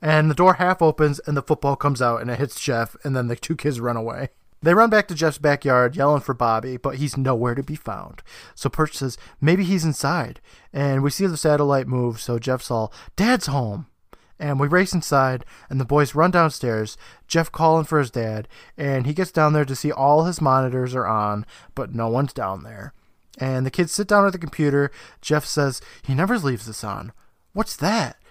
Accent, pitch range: American, 125-175 Hz